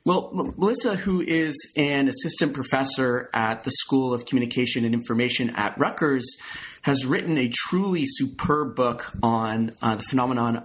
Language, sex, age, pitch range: English, male, 30-49, 115-140 Hz